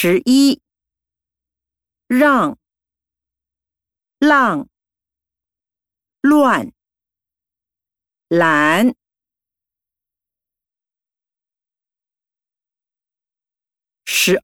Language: Japanese